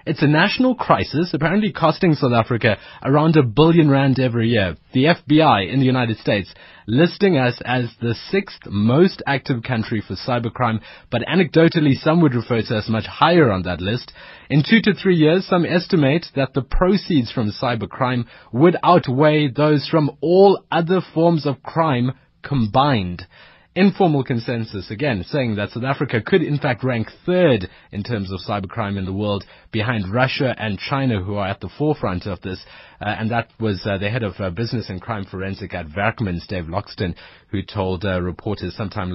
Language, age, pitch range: English, 30-49, 105-150 Hz